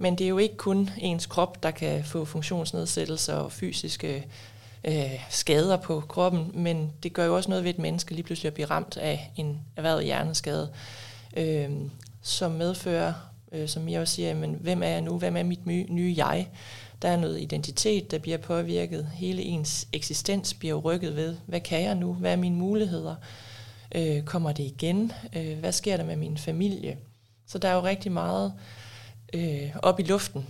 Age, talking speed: 20-39, 190 wpm